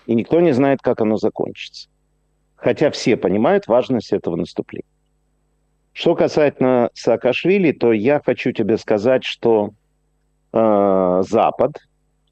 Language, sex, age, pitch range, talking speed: Russian, male, 50-69, 105-135 Hz, 115 wpm